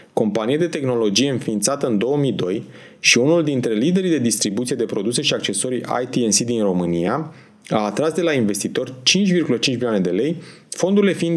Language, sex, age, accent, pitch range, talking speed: Romanian, male, 30-49, native, 115-170 Hz, 160 wpm